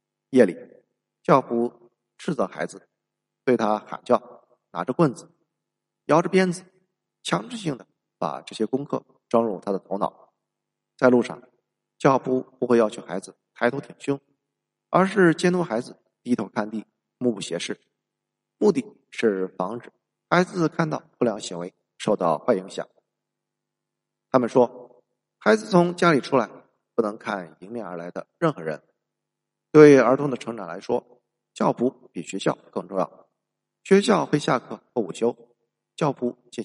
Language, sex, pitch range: Chinese, male, 105-155 Hz